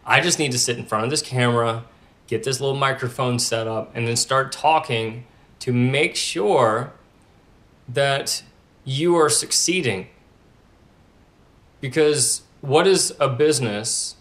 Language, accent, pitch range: English, American, 115-135 Hz